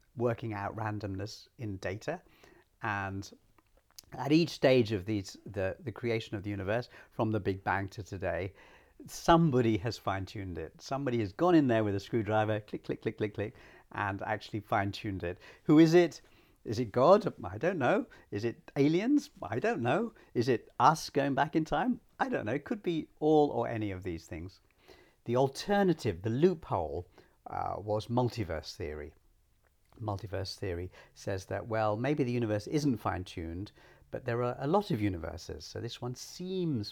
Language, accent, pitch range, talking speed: English, British, 100-135 Hz, 175 wpm